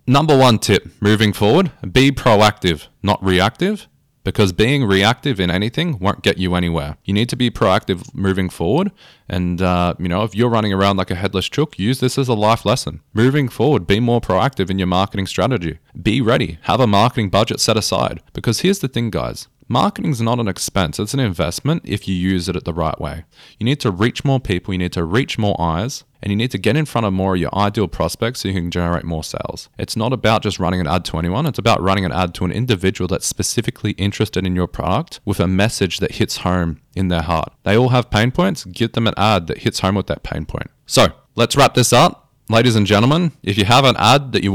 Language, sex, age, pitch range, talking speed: English, male, 20-39, 95-125 Hz, 235 wpm